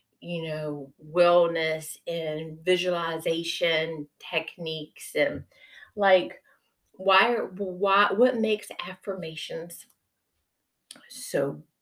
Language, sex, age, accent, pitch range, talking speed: English, female, 30-49, American, 155-205 Hz, 70 wpm